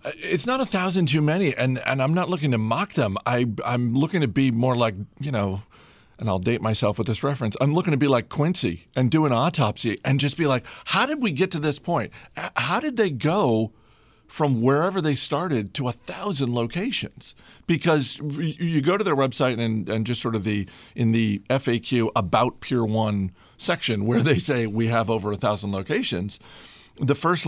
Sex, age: male, 50-69